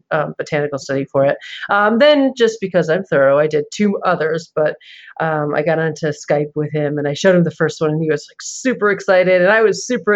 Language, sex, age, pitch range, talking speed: English, female, 30-49, 150-185 Hz, 235 wpm